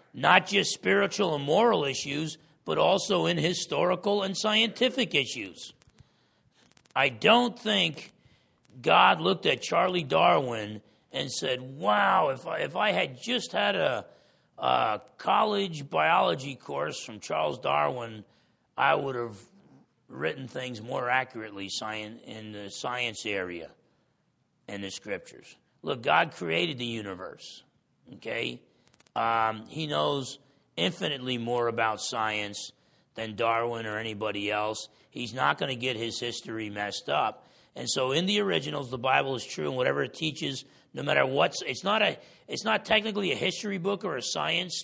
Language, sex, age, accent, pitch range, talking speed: English, male, 40-59, American, 110-170 Hz, 140 wpm